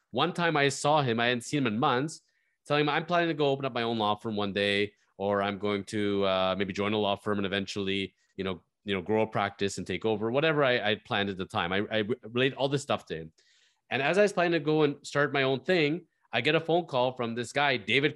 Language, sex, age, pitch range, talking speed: English, male, 30-49, 120-155 Hz, 275 wpm